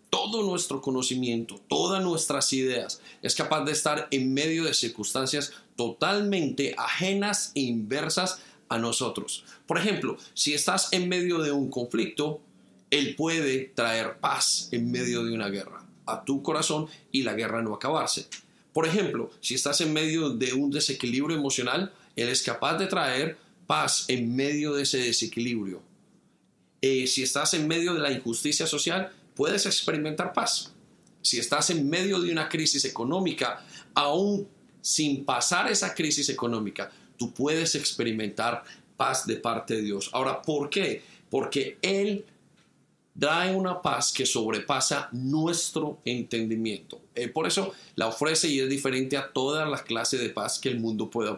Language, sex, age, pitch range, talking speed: Spanish, male, 40-59, 120-160 Hz, 155 wpm